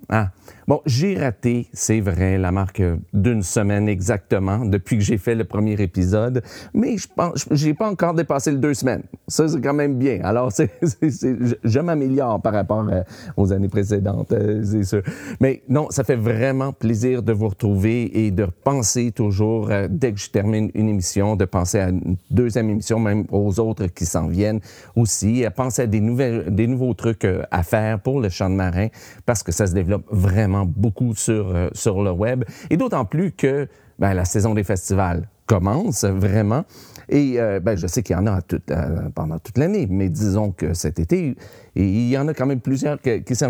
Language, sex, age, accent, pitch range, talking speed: French, male, 40-59, Canadian, 100-125 Hz, 205 wpm